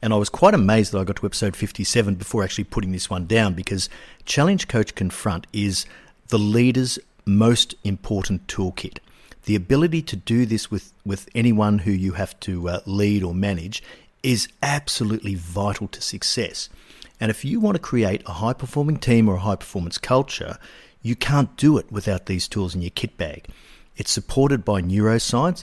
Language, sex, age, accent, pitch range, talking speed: English, male, 50-69, Australian, 95-115 Hz, 180 wpm